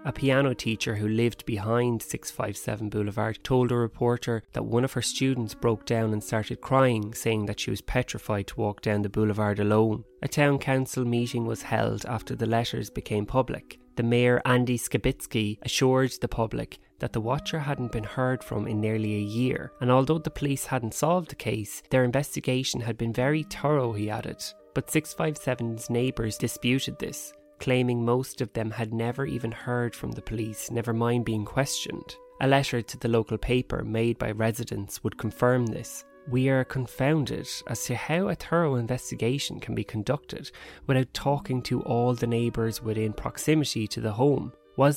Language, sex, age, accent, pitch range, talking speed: English, male, 20-39, Irish, 115-135 Hz, 175 wpm